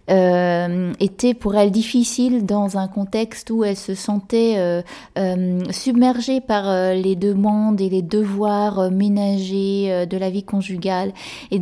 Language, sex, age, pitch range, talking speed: French, female, 20-39, 185-220 Hz, 155 wpm